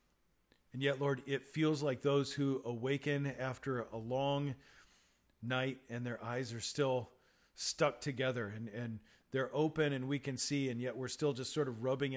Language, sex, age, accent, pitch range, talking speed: English, male, 40-59, American, 110-135 Hz, 180 wpm